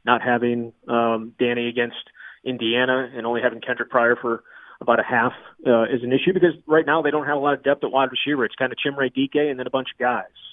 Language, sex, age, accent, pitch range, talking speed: English, male, 30-49, American, 120-140 Hz, 245 wpm